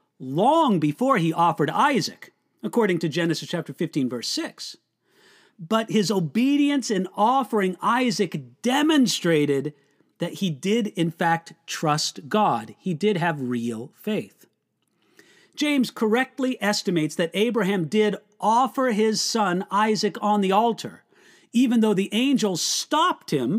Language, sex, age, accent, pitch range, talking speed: English, male, 40-59, American, 175-245 Hz, 125 wpm